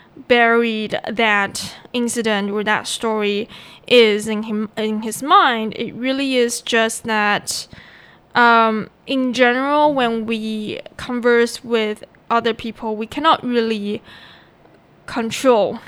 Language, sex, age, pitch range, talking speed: English, female, 10-29, 215-255 Hz, 115 wpm